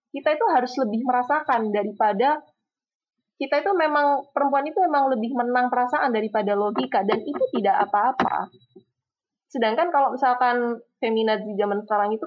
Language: Indonesian